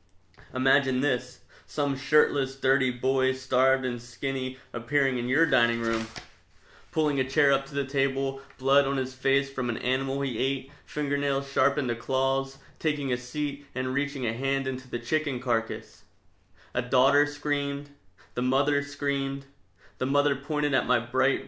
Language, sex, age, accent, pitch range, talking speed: English, male, 20-39, American, 120-140 Hz, 160 wpm